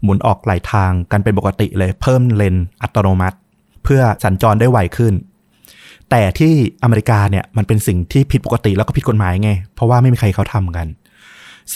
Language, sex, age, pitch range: Thai, male, 20-39, 100-130 Hz